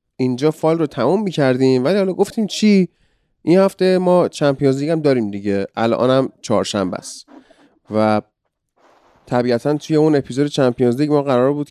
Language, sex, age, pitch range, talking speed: Persian, male, 30-49, 115-155 Hz, 155 wpm